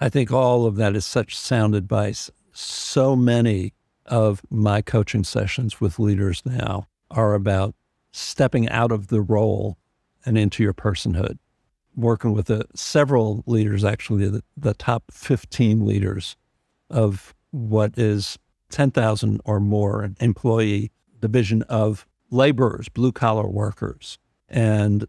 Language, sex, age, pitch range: English, male, 60-79, 105-120 Hz